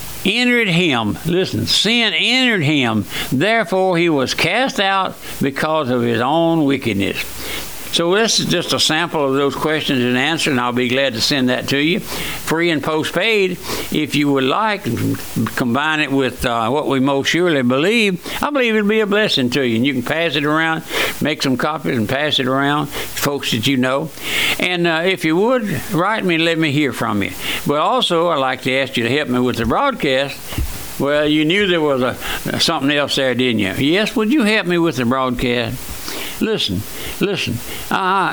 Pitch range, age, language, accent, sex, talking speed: 135-180 Hz, 60-79, English, American, male, 200 wpm